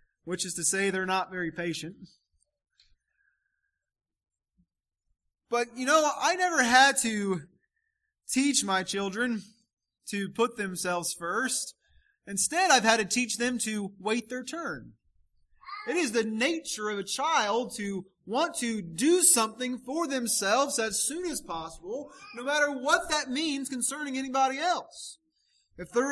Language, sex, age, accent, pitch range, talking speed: English, male, 20-39, American, 225-310 Hz, 140 wpm